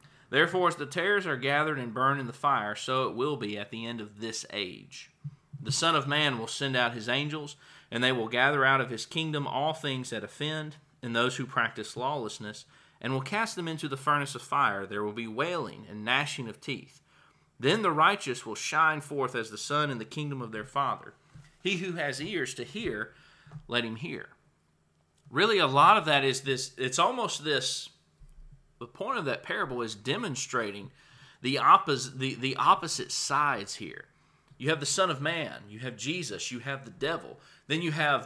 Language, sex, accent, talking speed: English, male, American, 200 wpm